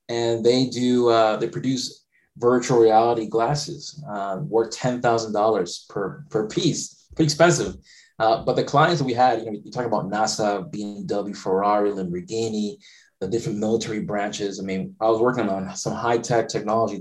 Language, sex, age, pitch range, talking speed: English, male, 20-39, 115-140 Hz, 160 wpm